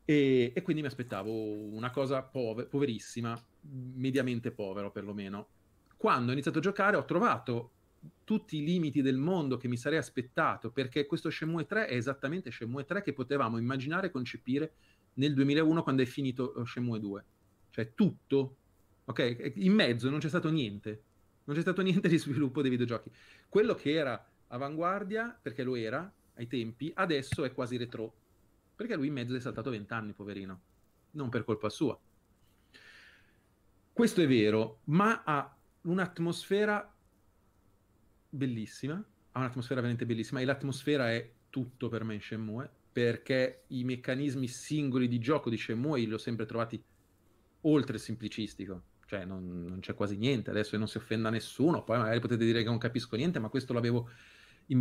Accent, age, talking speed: native, 30-49, 160 wpm